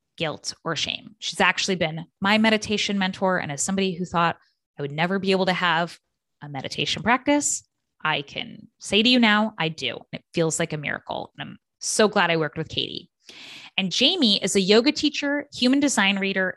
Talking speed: 195 wpm